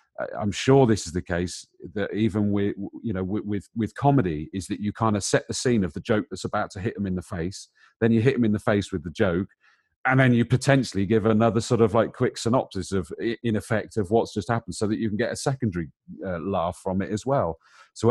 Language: English